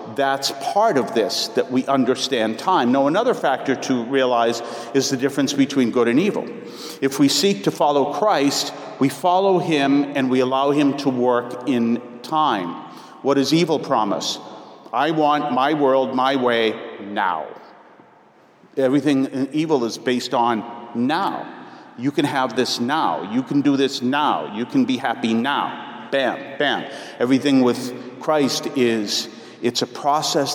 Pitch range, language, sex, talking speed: 125-170 Hz, English, male, 155 wpm